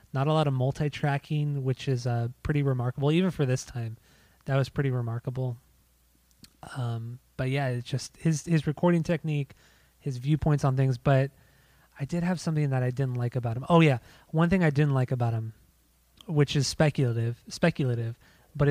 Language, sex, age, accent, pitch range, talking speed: English, male, 20-39, American, 130-150 Hz, 180 wpm